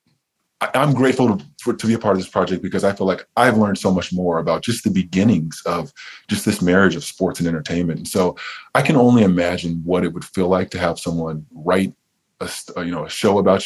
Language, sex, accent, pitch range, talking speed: English, male, American, 90-110 Hz, 230 wpm